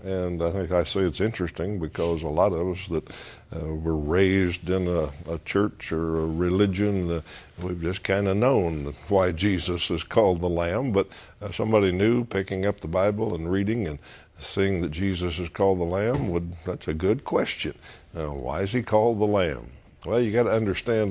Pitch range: 80-95 Hz